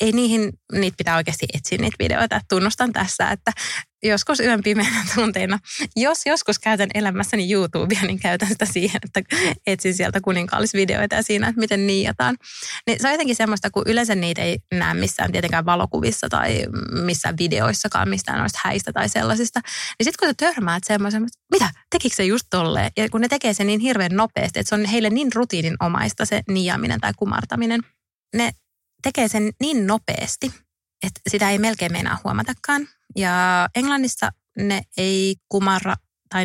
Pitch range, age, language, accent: 185-230 Hz, 20-39, English, Finnish